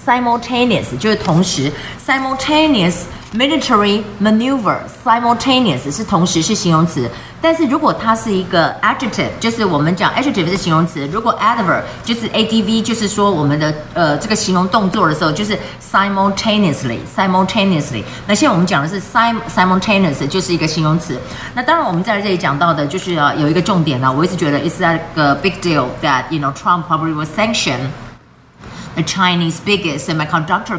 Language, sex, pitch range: Chinese, female, 160-220 Hz